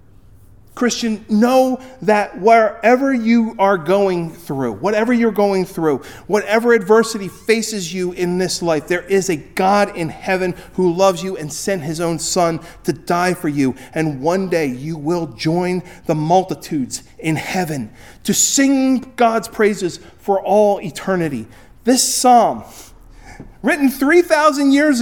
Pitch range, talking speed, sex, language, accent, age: 135-200 Hz, 140 wpm, male, English, American, 40-59